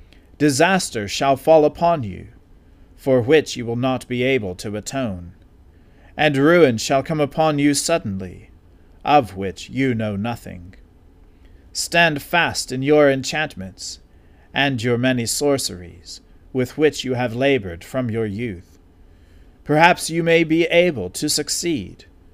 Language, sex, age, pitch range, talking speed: English, male, 40-59, 90-145 Hz, 135 wpm